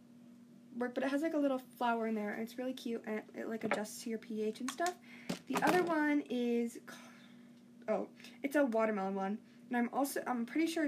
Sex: female